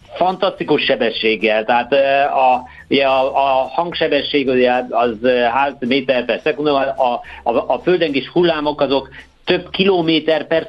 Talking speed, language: 120 wpm, Hungarian